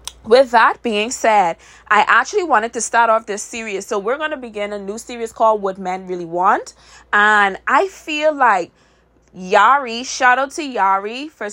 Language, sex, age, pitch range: English, female, 20-39, 190-250 Hz